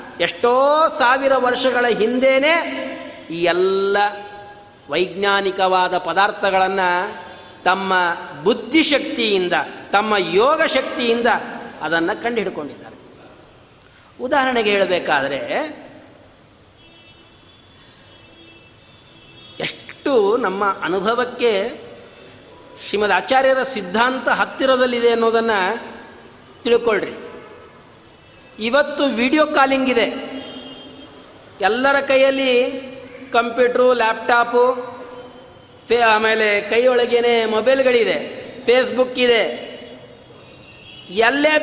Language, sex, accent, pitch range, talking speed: Kannada, male, native, 200-270 Hz, 60 wpm